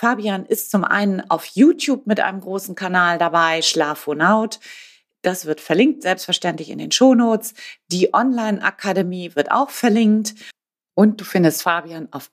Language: German